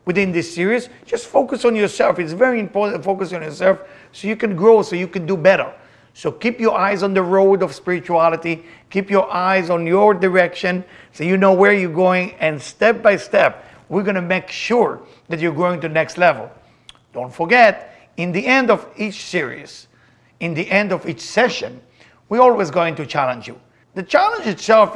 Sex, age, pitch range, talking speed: male, 50-69, 165-205 Hz, 200 wpm